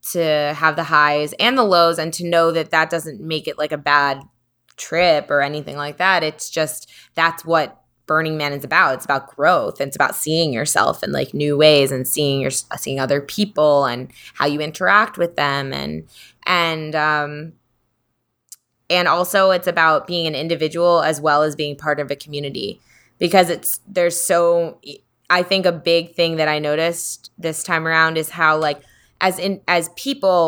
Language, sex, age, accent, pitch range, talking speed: English, female, 20-39, American, 145-175 Hz, 185 wpm